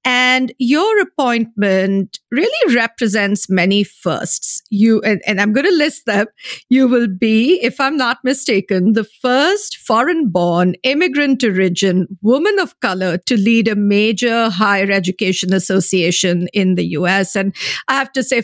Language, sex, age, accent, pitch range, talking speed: English, female, 50-69, Indian, 205-270 Hz, 145 wpm